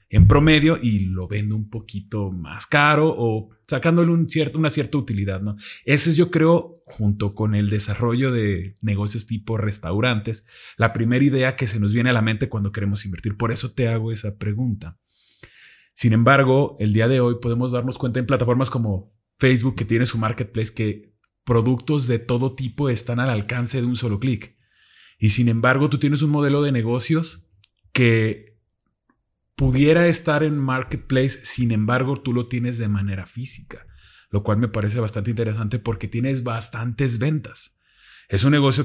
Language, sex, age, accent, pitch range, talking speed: Spanish, male, 30-49, Mexican, 105-130 Hz, 170 wpm